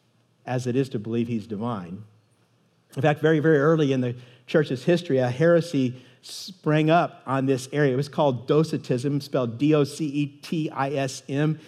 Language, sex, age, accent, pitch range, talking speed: English, male, 50-69, American, 130-165 Hz, 150 wpm